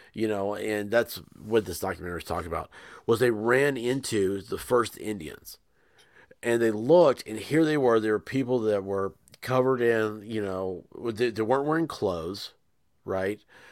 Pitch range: 105-125 Hz